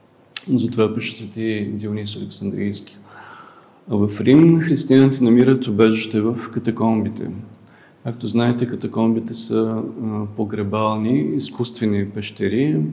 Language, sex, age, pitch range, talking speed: Bulgarian, male, 50-69, 105-125 Hz, 90 wpm